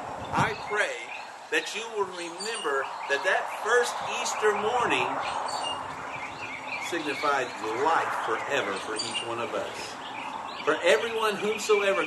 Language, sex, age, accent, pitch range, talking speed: English, male, 50-69, American, 185-230 Hz, 110 wpm